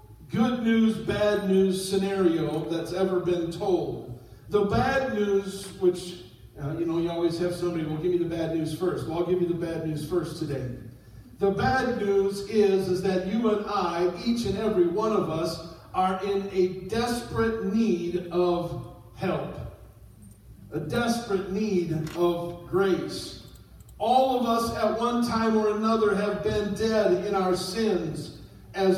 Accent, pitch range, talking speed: American, 160-205 Hz, 160 wpm